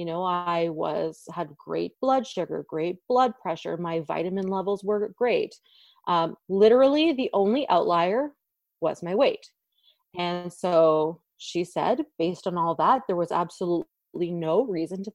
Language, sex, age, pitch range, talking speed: English, female, 30-49, 170-210 Hz, 150 wpm